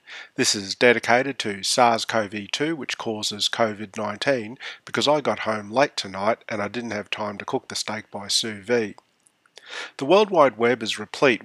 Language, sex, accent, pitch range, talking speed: English, male, Australian, 105-125 Hz, 170 wpm